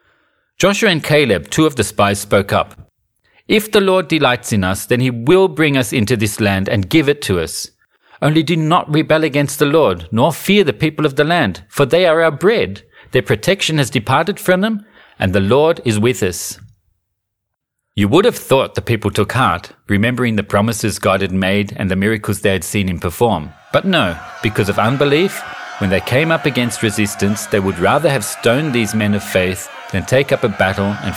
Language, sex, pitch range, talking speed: English, male, 100-150 Hz, 205 wpm